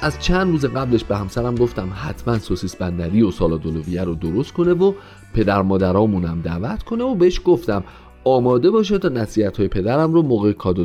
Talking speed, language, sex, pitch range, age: 170 wpm, Persian, male, 95-155 Hz, 40-59